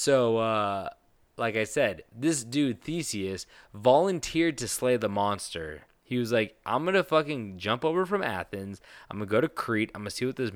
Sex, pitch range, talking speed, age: male, 105-135 Hz, 205 wpm, 20-39